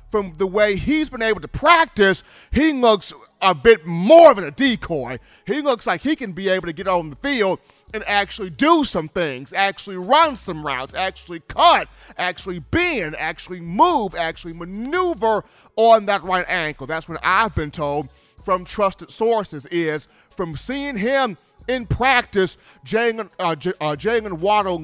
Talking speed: 160 wpm